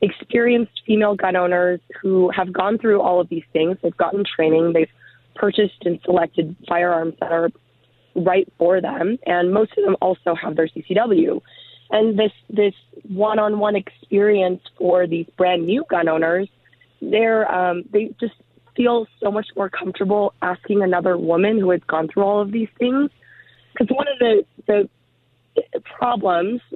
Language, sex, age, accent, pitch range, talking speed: English, female, 20-39, American, 170-210 Hz, 155 wpm